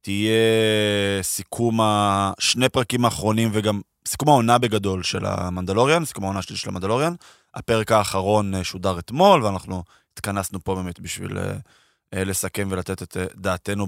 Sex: male